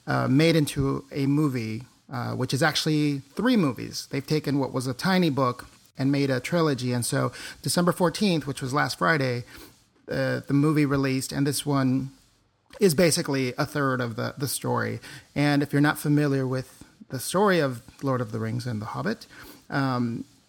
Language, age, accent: English, 40-59, American